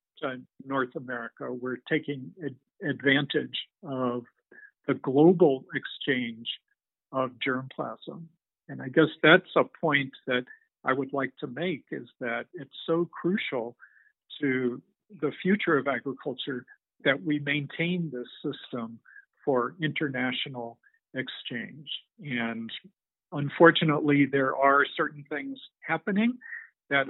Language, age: English, 50-69